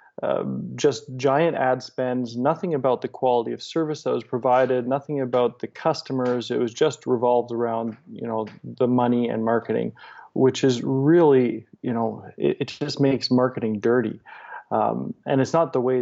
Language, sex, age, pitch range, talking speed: English, male, 20-39, 120-140 Hz, 170 wpm